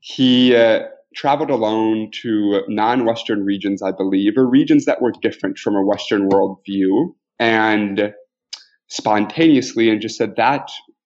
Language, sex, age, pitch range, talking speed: English, male, 20-39, 105-130 Hz, 130 wpm